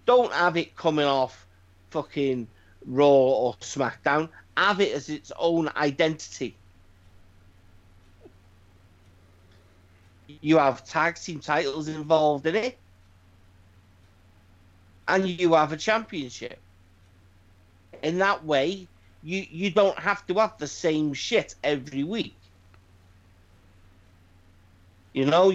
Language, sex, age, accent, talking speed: English, male, 50-69, British, 105 wpm